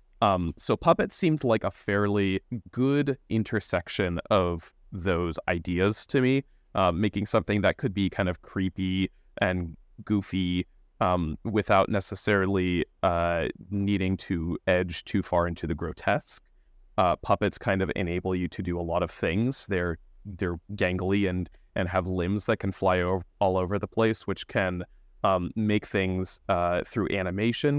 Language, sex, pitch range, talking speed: English, male, 90-105 Hz, 155 wpm